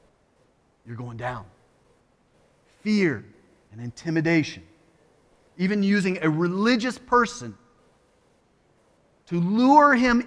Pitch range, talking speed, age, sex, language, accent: 165-225 Hz, 80 wpm, 30-49, male, English, American